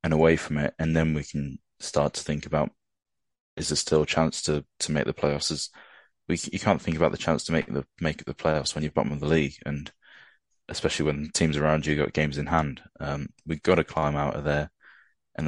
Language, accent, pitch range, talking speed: English, British, 75-80 Hz, 235 wpm